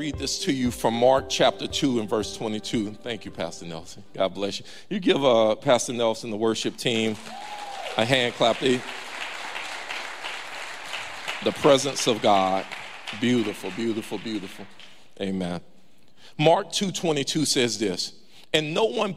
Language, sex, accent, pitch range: English, male, American, 115-165 Hz